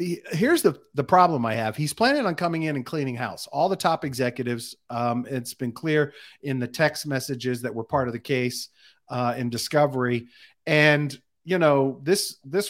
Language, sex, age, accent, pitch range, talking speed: English, male, 40-59, American, 120-150 Hz, 190 wpm